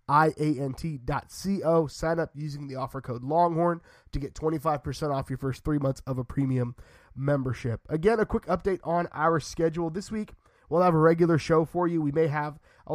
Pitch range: 145-170 Hz